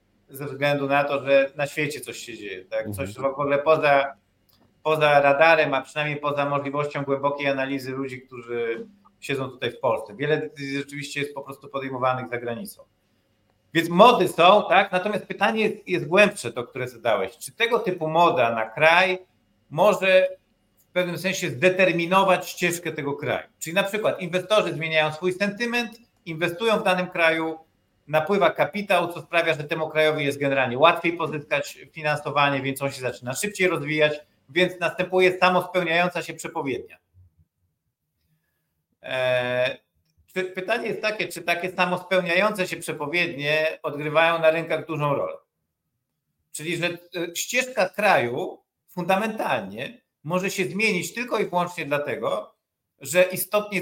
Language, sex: Polish, male